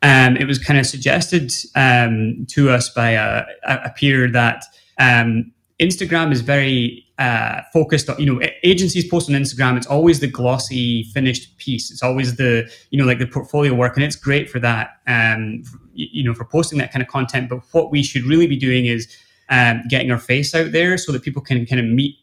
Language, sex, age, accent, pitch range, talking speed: English, male, 20-39, British, 120-140 Hz, 205 wpm